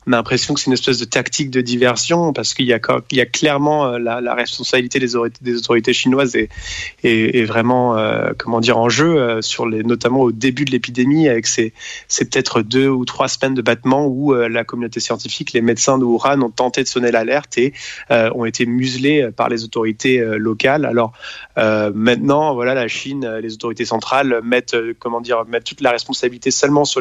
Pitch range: 115-130 Hz